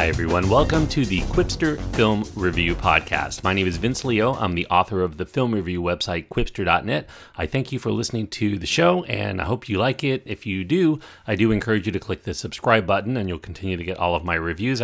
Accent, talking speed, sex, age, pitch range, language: American, 235 wpm, male, 40-59, 95-120 Hz, English